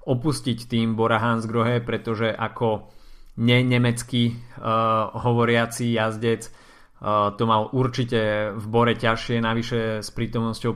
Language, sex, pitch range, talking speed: Slovak, male, 105-120 Hz, 110 wpm